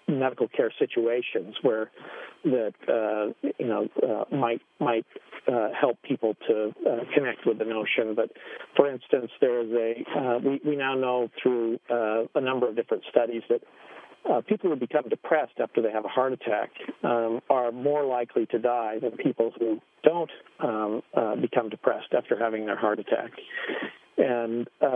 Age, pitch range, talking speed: 50-69, 115-135 Hz, 170 wpm